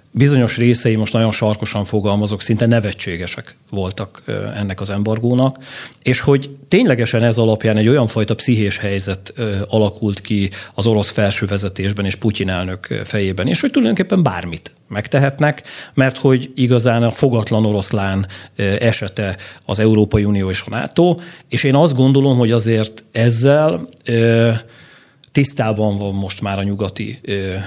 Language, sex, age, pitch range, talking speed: Hungarian, male, 40-59, 100-120 Hz, 135 wpm